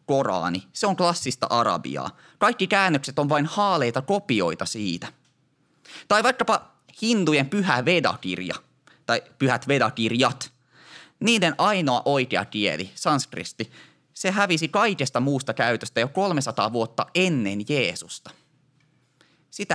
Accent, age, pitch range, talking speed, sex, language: native, 20-39, 120-175 Hz, 110 wpm, male, Finnish